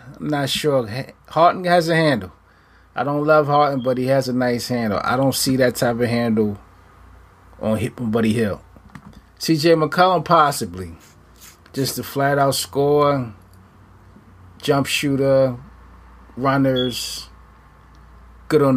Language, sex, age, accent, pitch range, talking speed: English, male, 20-39, American, 95-130 Hz, 135 wpm